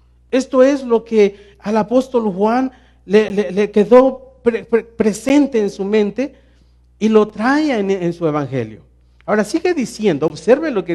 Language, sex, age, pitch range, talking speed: Spanish, male, 40-59, 170-245 Hz, 165 wpm